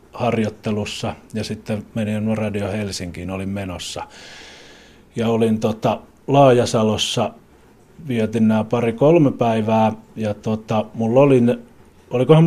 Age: 30-49